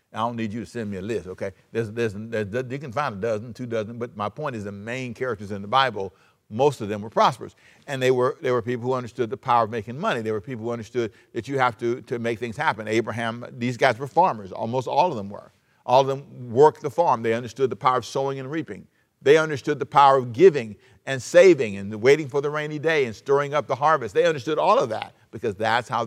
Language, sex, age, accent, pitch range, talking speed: English, male, 60-79, American, 110-140 Hz, 260 wpm